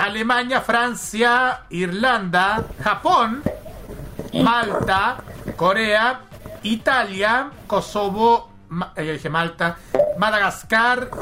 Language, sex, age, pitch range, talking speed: Spanish, male, 40-59, 175-225 Hz, 55 wpm